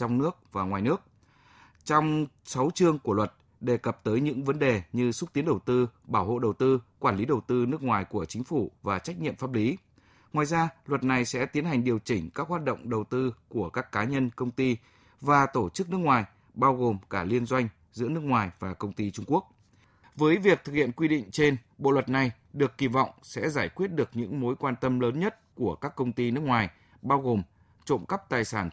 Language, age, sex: Vietnamese, 20-39, male